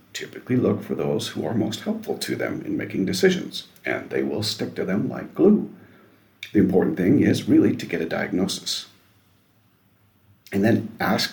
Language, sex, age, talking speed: English, male, 50-69, 175 wpm